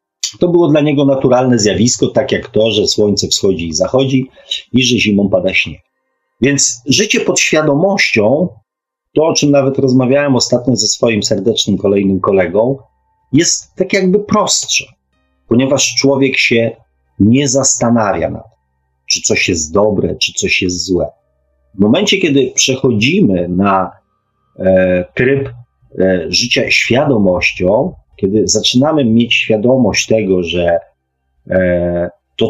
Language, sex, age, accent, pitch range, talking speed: Polish, male, 40-59, native, 95-130 Hz, 130 wpm